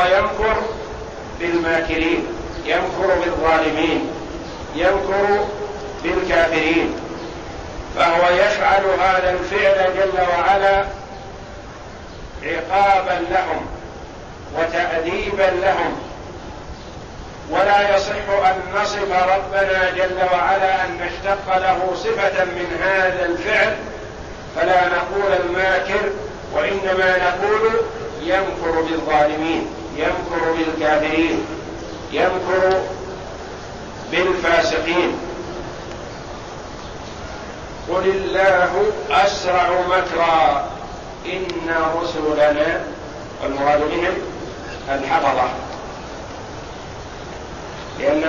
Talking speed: 60 wpm